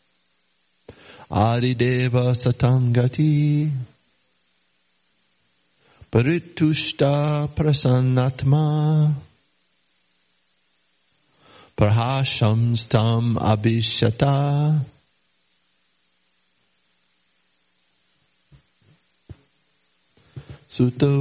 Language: English